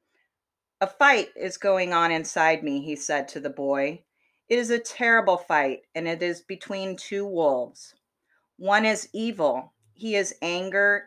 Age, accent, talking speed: 40-59, American, 155 wpm